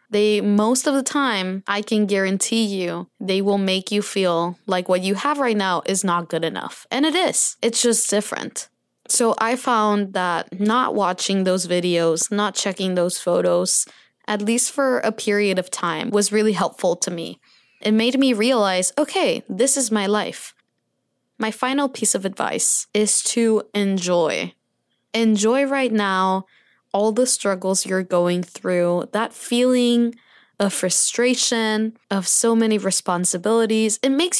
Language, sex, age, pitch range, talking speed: English, female, 20-39, 195-235 Hz, 155 wpm